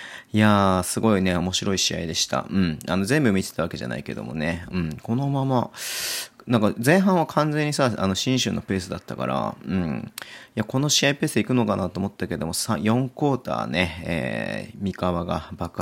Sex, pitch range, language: male, 90-125 Hz, Japanese